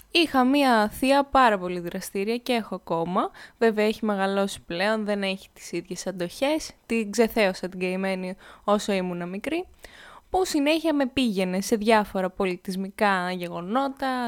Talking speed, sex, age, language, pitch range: 140 wpm, female, 20-39, Greek, 195-255 Hz